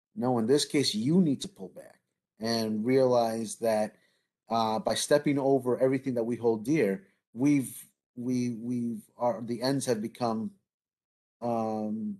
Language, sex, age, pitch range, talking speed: English, male, 40-59, 115-145 Hz, 150 wpm